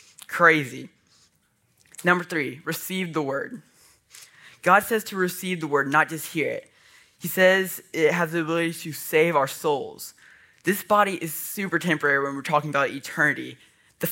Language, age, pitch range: English, 10-29, 145-175 Hz